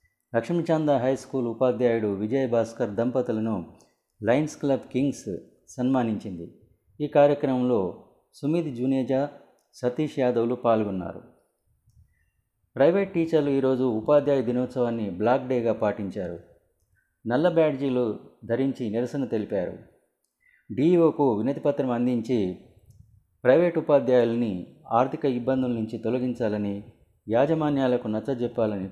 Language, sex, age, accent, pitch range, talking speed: Telugu, male, 30-49, native, 110-135 Hz, 85 wpm